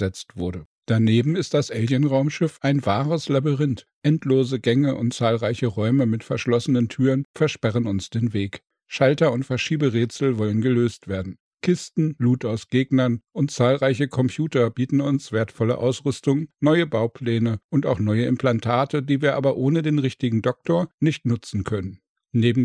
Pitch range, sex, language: 115-140 Hz, male, German